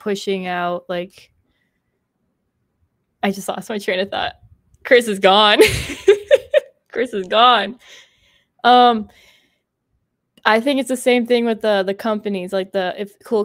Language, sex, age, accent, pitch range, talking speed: English, female, 20-39, American, 190-225 Hz, 140 wpm